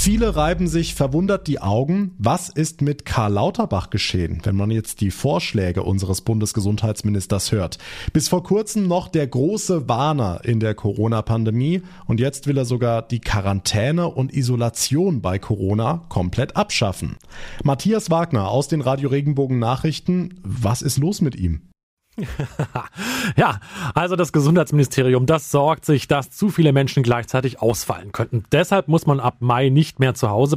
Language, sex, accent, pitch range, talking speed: German, male, German, 115-160 Hz, 155 wpm